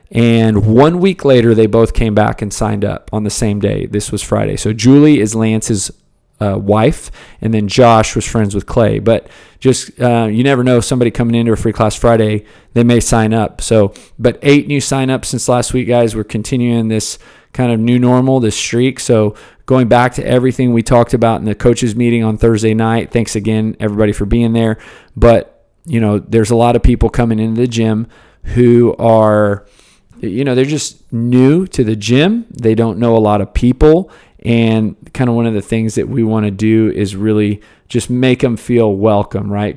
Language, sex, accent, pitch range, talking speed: English, male, American, 105-120 Hz, 205 wpm